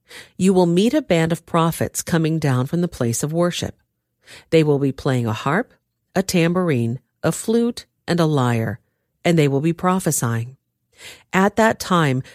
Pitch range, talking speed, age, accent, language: 135-185 Hz, 170 wpm, 50-69, American, English